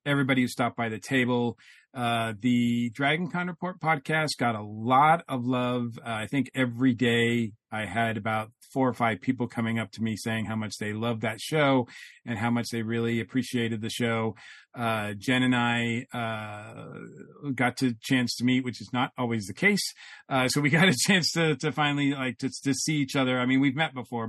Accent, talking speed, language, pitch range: American, 210 wpm, English, 115-130 Hz